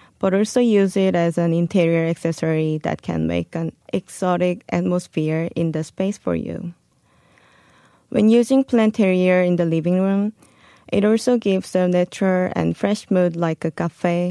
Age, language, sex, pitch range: 20-39, Korean, female, 170-195 Hz